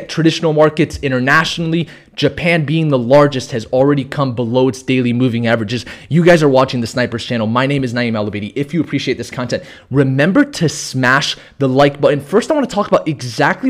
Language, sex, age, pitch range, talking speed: English, male, 20-39, 145-195 Hz, 195 wpm